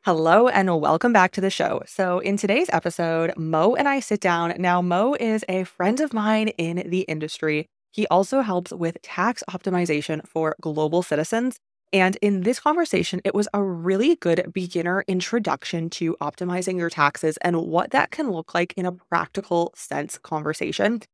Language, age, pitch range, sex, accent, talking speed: English, 20-39, 165-205 Hz, female, American, 175 wpm